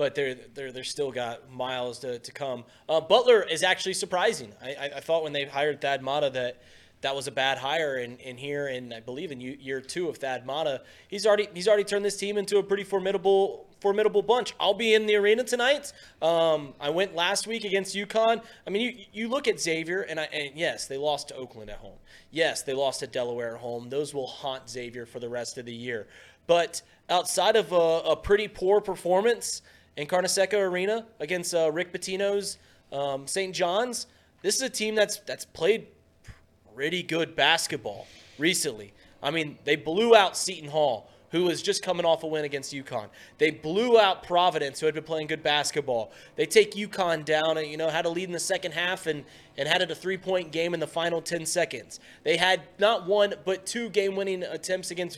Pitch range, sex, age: 145-195 Hz, male, 20-39